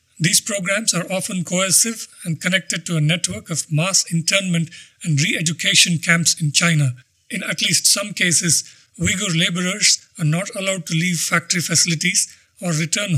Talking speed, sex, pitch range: 155 wpm, male, 160-190 Hz